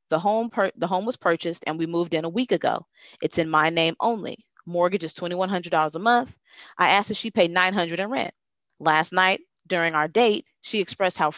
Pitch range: 170-220 Hz